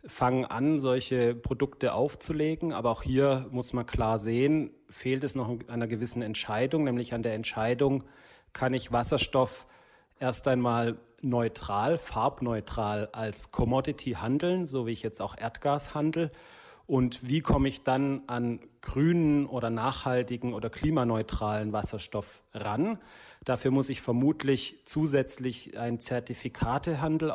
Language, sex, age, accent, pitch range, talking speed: German, male, 30-49, German, 115-135 Hz, 130 wpm